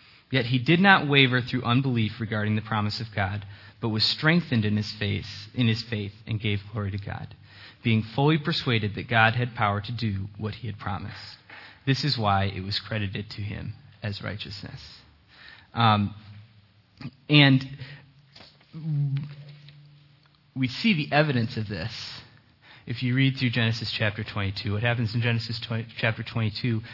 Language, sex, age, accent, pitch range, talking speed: English, male, 20-39, American, 105-120 Hz, 150 wpm